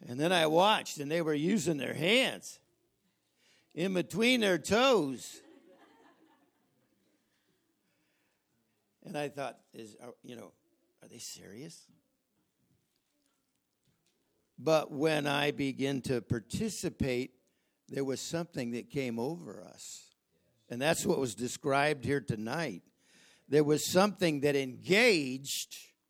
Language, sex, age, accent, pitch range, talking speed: English, male, 60-79, American, 135-180 Hz, 115 wpm